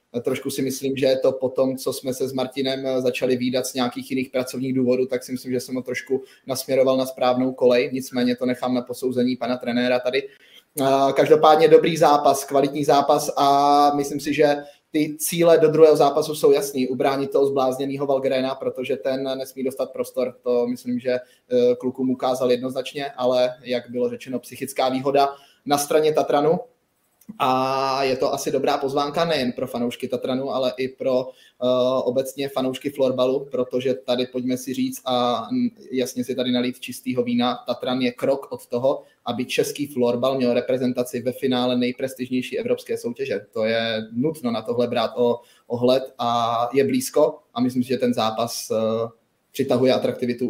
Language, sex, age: Czech, male, 20-39